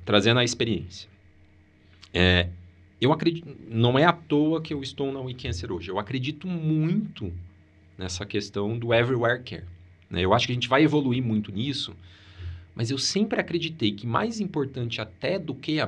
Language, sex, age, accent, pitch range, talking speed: Portuguese, male, 40-59, Brazilian, 95-150 Hz, 170 wpm